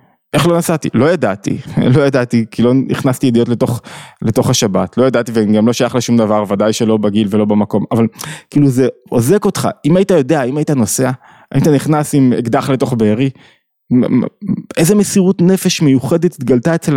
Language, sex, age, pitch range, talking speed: Hebrew, male, 20-39, 125-175 Hz, 175 wpm